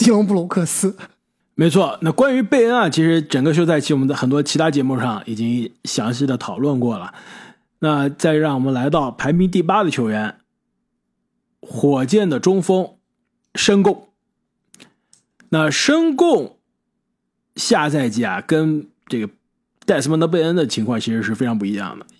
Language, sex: Chinese, male